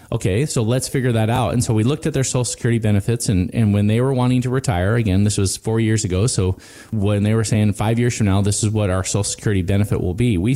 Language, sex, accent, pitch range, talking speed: English, male, American, 100-125 Hz, 275 wpm